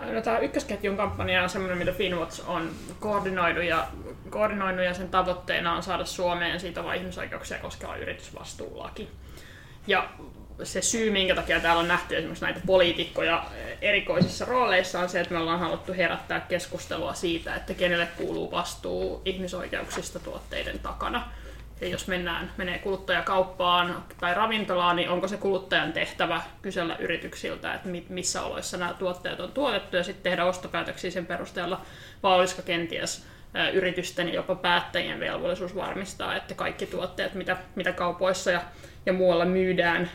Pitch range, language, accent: 175-190 Hz, Finnish, native